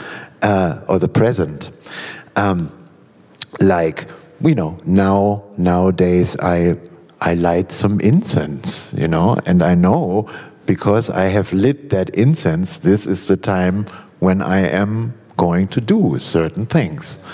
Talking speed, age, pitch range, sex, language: 130 wpm, 60-79, 90-120 Hz, male, English